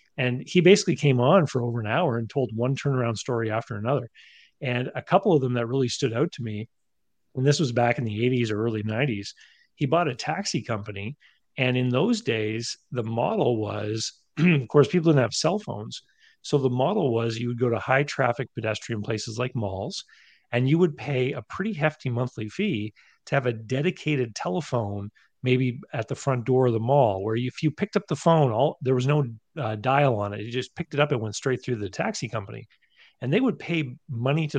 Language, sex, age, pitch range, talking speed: English, male, 40-59, 115-150 Hz, 215 wpm